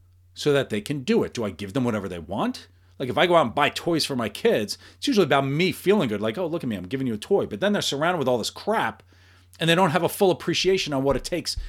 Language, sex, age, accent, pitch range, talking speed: English, male, 40-59, American, 95-150 Hz, 305 wpm